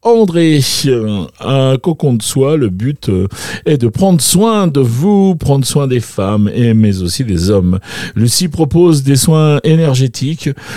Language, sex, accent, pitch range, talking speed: French, male, French, 100-140 Hz, 145 wpm